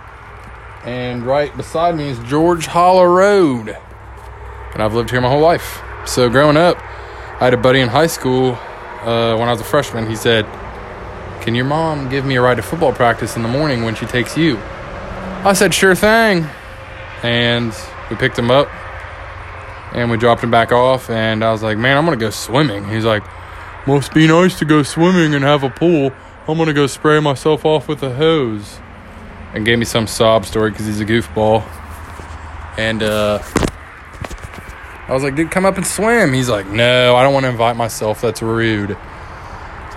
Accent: American